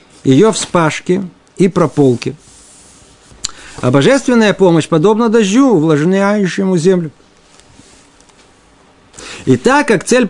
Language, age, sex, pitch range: Russian, 50-69, male, 140-195 Hz